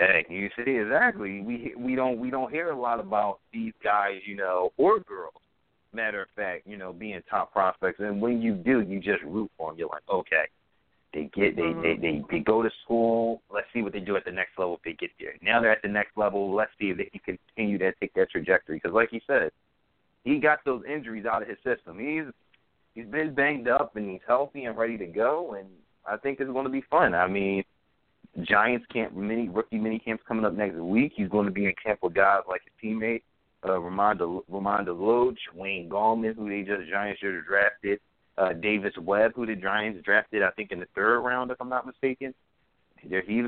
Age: 30-49